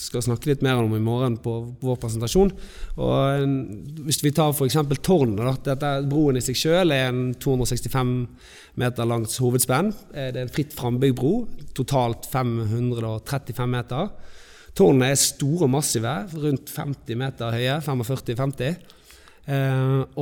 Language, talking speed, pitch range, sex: Swedish, 135 wpm, 120-150 Hz, male